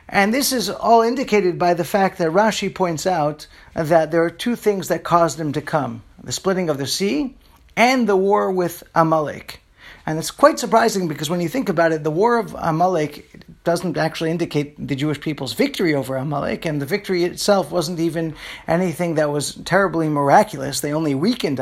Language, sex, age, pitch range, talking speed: English, male, 40-59, 155-200 Hz, 190 wpm